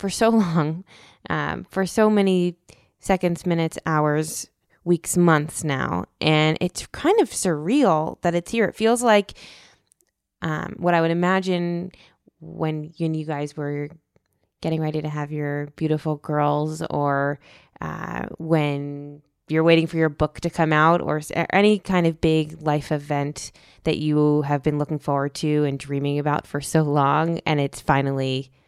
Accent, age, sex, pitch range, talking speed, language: American, 20-39, female, 145-180 Hz, 160 wpm, English